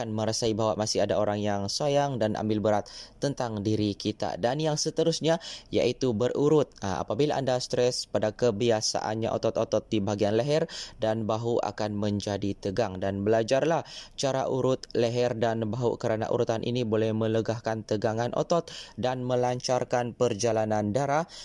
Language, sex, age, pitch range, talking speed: Malay, male, 20-39, 110-130 Hz, 140 wpm